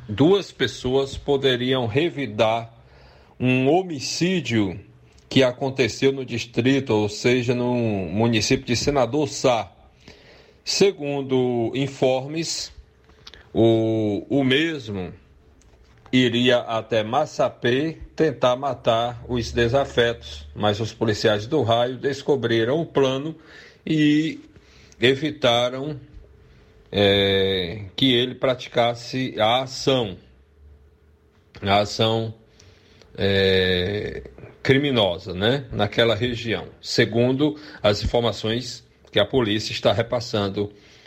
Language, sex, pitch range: Portuguese, male, 105-135 Hz